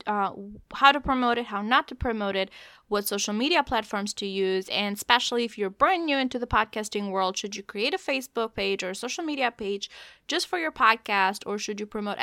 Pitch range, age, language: 210-265 Hz, 20-39, English